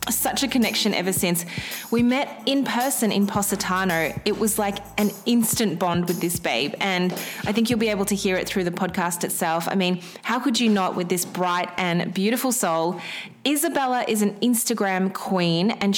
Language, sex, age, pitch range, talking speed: English, female, 20-39, 185-230 Hz, 190 wpm